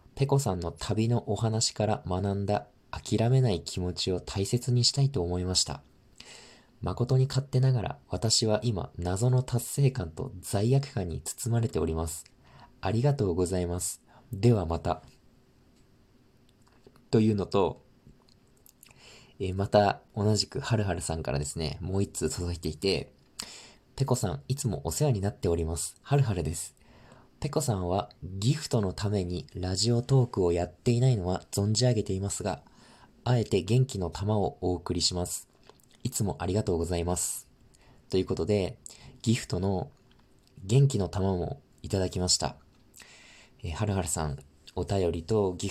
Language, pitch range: Japanese, 90-120 Hz